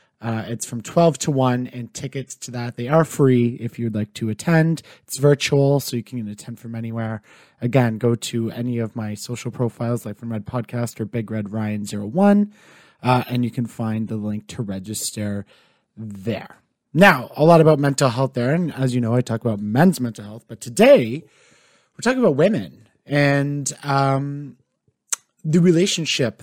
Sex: male